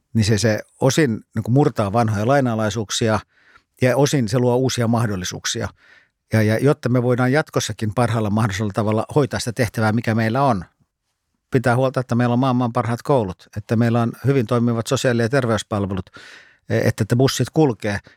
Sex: male